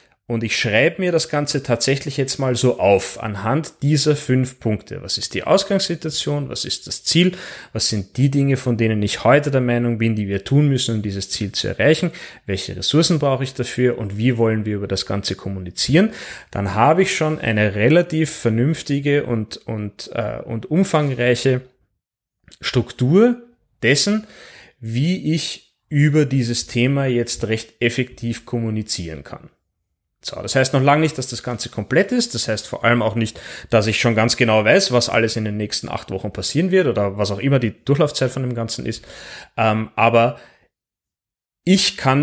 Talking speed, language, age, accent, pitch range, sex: 175 wpm, German, 30-49, German, 110-145 Hz, male